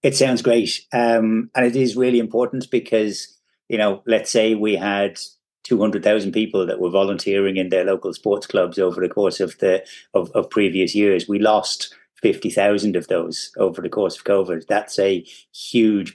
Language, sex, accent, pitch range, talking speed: English, male, British, 100-110 Hz, 175 wpm